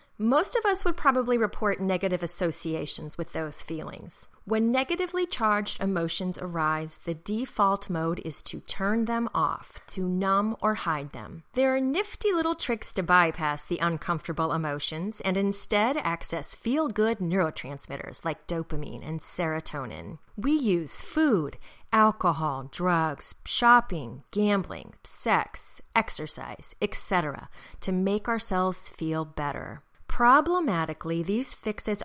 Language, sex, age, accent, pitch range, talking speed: English, female, 30-49, American, 165-240 Hz, 125 wpm